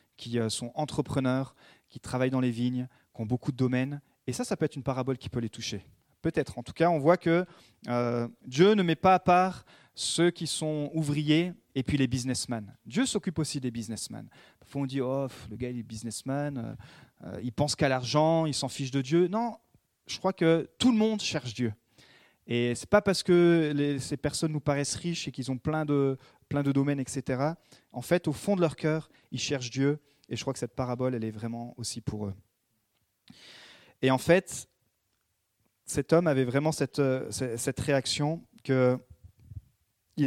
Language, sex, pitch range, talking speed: French, male, 120-155 Hz, 200 wpm